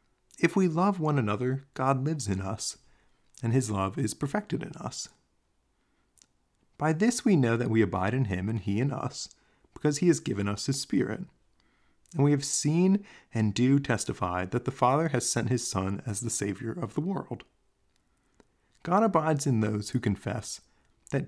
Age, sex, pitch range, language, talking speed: 30-49, male, 105-150 Hz, English, 180 wpm